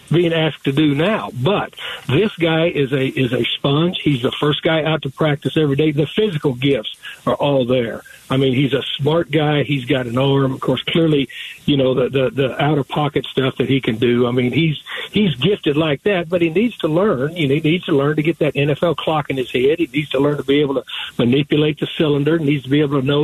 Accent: American